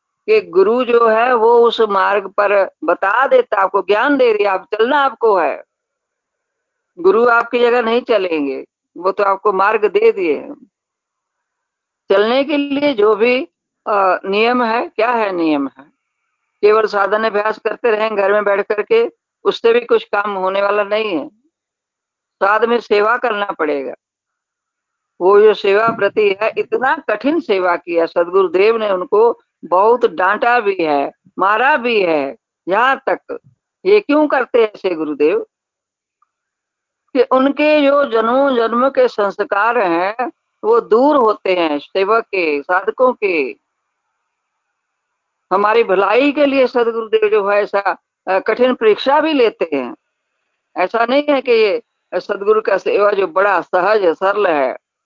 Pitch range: 200-300 Hz